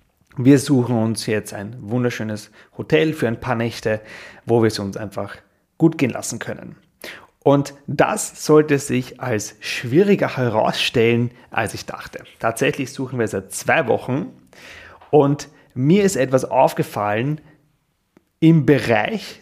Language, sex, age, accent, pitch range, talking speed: German, male, 30-49, German, 120-150 Hz, 135 wpm